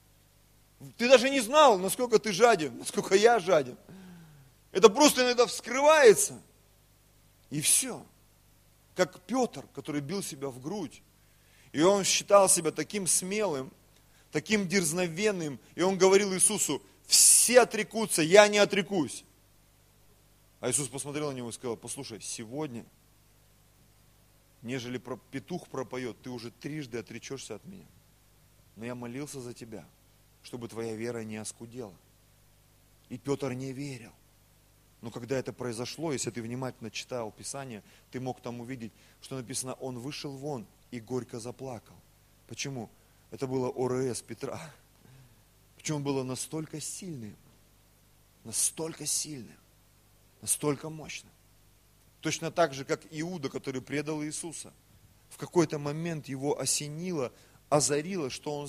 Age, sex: 30-49, male